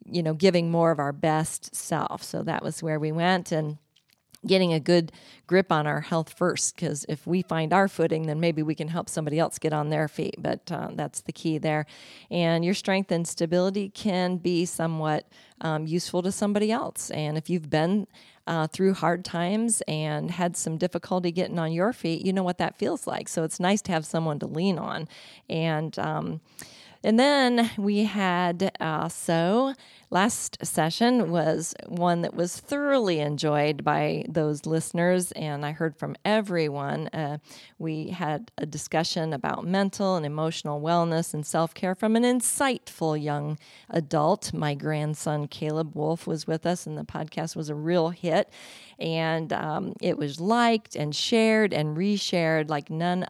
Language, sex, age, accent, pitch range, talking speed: English, female, 40-59, American, 155-185 Hz, 175 wpm